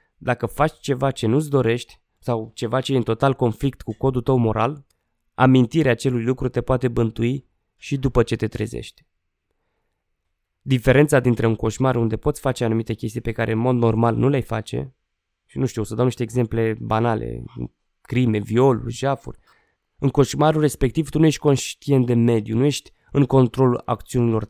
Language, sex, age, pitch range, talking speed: Romanian, male, 20-39, 115-140 Hz, 175 wpm